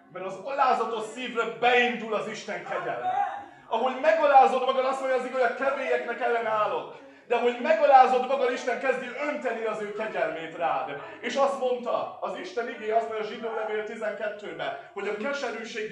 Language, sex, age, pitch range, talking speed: Hungarian, male, 30-49, 220-275 Hz, 170 wpm